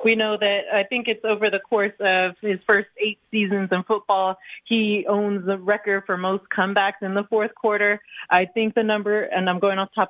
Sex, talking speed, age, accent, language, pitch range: female, 220 wpm, 30-49, American, English, 190-215 Hz